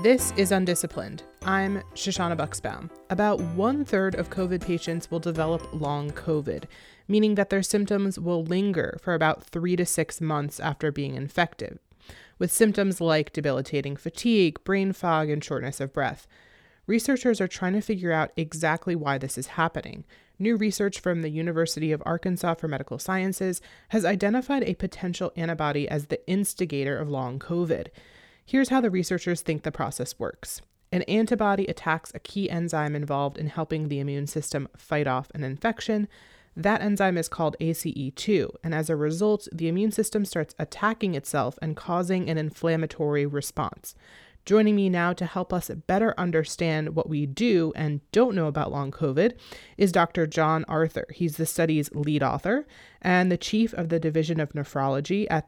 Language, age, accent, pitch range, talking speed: English, 30-49, American, 155-190 Hz, 165 wpm